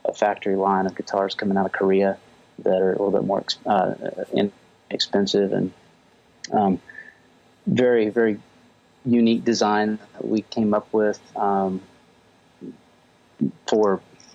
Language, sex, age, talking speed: English, male, 30-49, 125 wpm